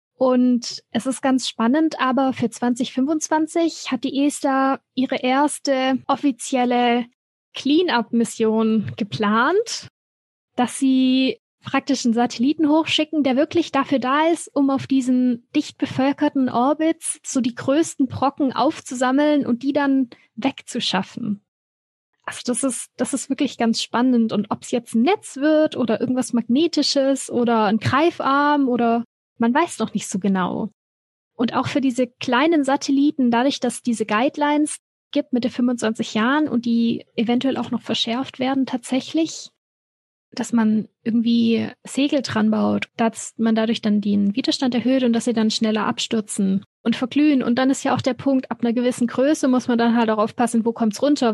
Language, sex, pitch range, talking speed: German, female, 230-275 Hz, 160 wpm